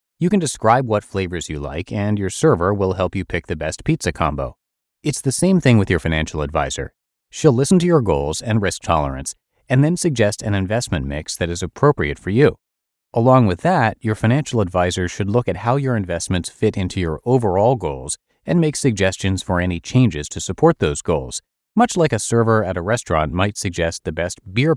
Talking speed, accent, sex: 205 wpm, American, male